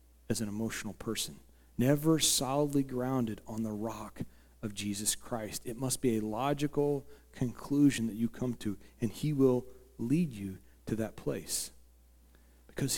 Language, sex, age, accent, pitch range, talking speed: English, male, 40-59, American, 105-150 Hz, 150 wpm